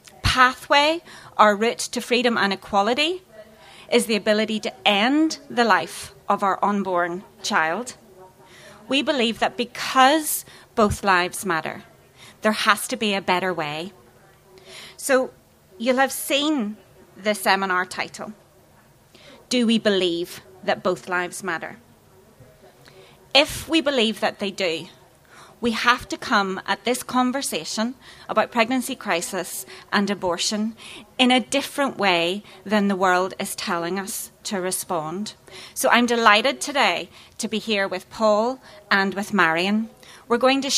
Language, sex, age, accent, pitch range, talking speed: English, female, 30-49, British, 190-250 Hz, 135 wpm